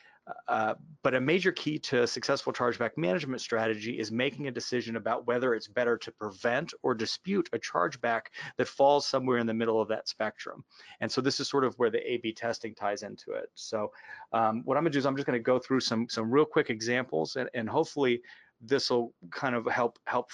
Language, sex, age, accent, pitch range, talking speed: English, male, 30-49, American, 115-135 Hz, 220 wpm